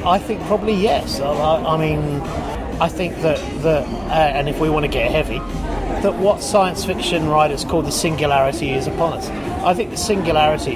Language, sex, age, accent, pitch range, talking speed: English, male, 30-49, British, 150-205 Hz, 185 wpm